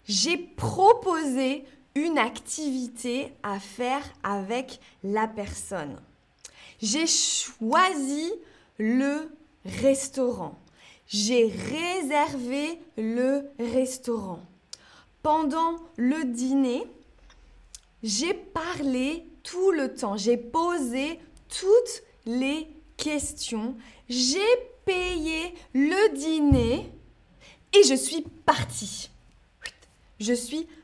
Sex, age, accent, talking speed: female, 20-39, French, 80 wpm